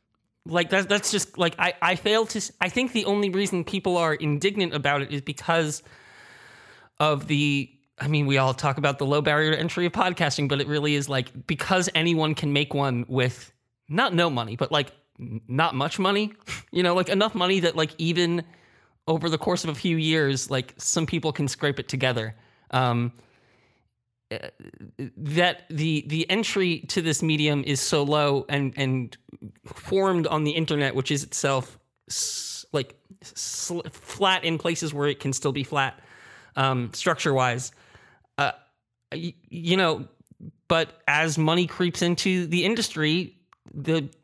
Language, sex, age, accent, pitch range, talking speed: English, male, 20-39, American, 135-170 Hz, 165 wpm